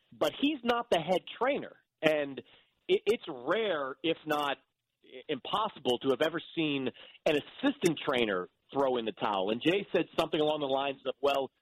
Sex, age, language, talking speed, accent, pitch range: male, 40-59, English, 165 wpm, American, 130-170 Hz